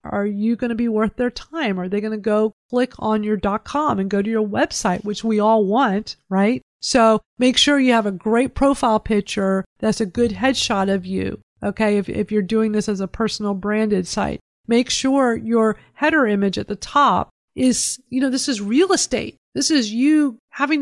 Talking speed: 210 wpm